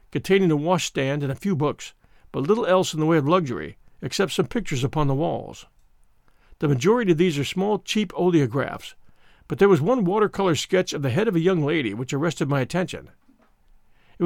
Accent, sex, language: American, male, English